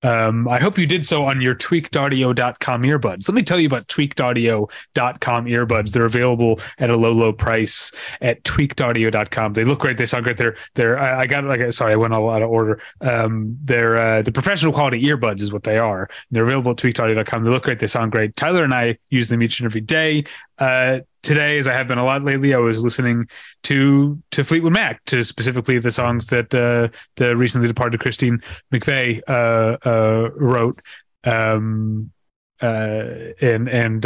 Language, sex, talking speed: English, male, 200 wpm